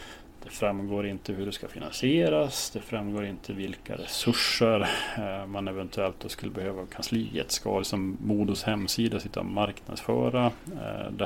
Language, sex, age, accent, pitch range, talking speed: English, male, 30-49, Norwegian, 100-115 Hz, 150 wpm